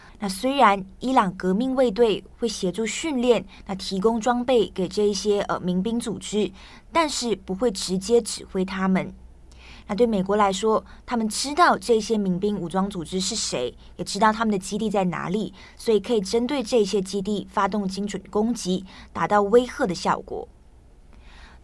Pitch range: 185-230 Hz